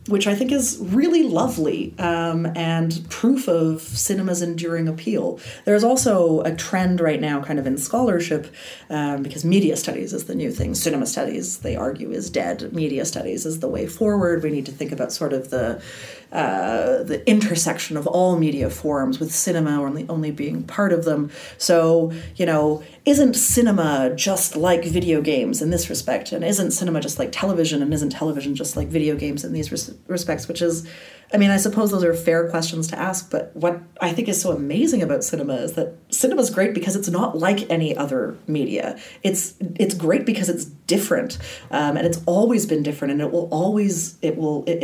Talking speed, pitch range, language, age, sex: 200 wpm, 160-215 Hz, English, 30-49, female